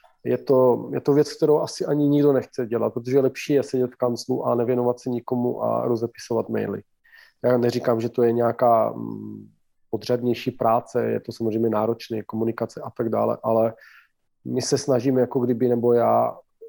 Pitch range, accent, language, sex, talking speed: 115-130 Hz, native, Czech, male, 175 wpm